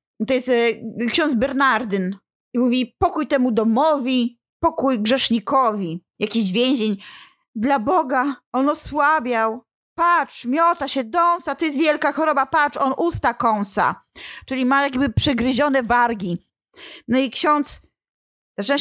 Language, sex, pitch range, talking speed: Polish, female, 235-295 Hz, 120 wpm